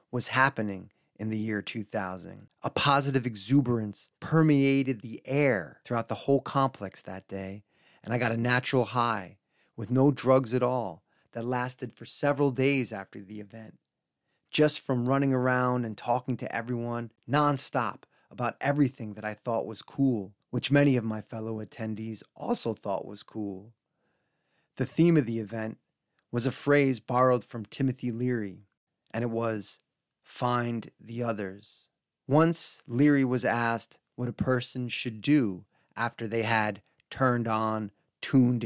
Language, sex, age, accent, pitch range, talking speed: English, male, 30-49, American, 110-130 Hz, 150 wpm